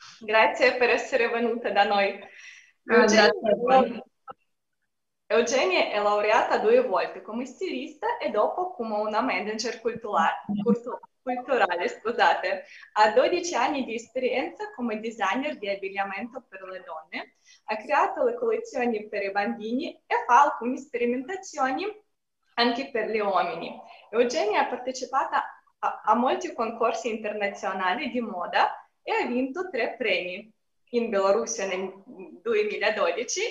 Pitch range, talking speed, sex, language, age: 210-290 Hz, 120 wpm, female, Italian, 20-39